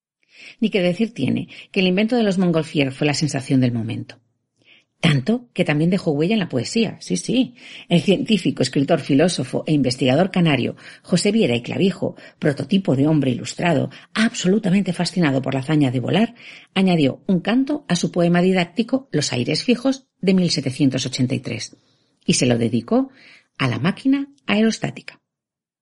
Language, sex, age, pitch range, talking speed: Spanish, female, 50-69, 140-200 Hz, 155 wpm